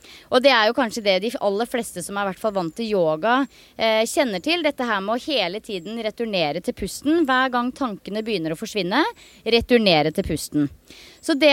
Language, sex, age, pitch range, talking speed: English, female, 30-49, 215-290 Hz, 200 wpm